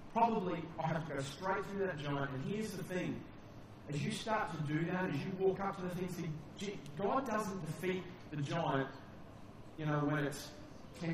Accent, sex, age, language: Australian, male, 30-49, English